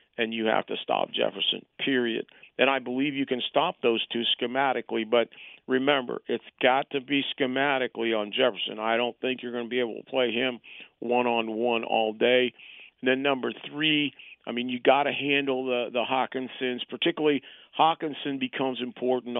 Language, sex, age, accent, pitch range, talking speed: English, male, 50-69, American, 115-135 Hz, 175 wpm